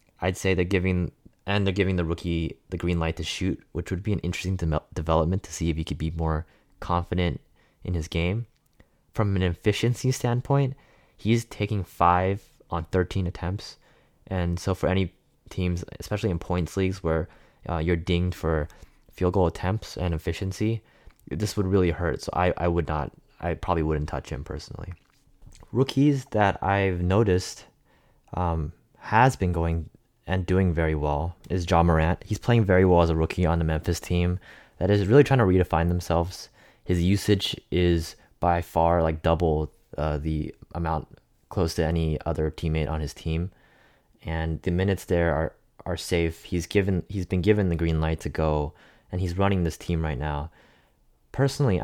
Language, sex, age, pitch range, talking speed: English, male, 20-39, 80-95 Hz, 175 wpm